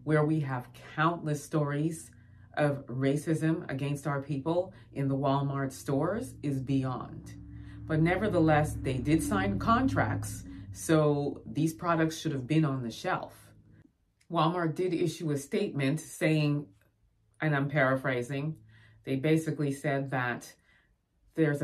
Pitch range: 130-155 Hz